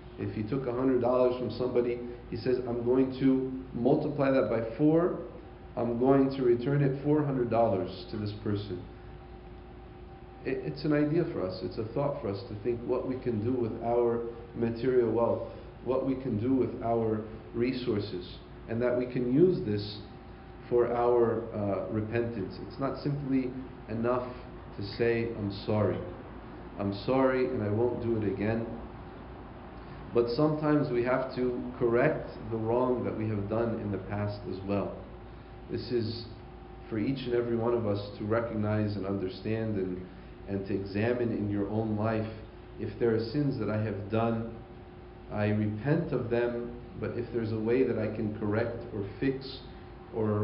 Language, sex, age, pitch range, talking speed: English, male, 40-59, 105-125 Hz, 165 wpm